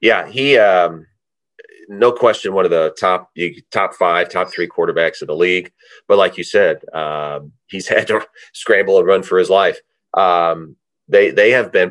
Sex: male